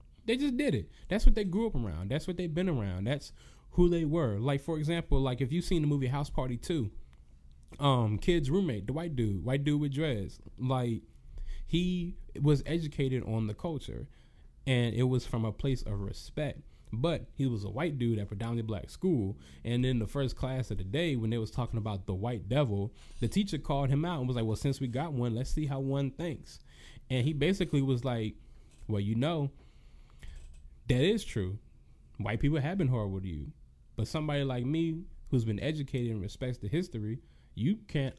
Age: 20-39